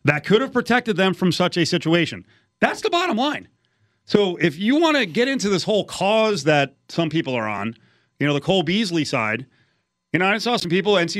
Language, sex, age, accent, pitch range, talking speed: English, male, 30-49, American, 140-190 Hz, 220 wpm